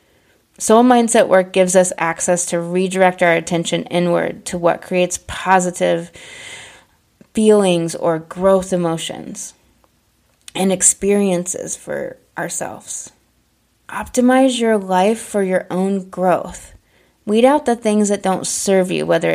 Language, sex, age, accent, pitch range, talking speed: English, female, 20-39, American, 170-205 Hz, 120 wpm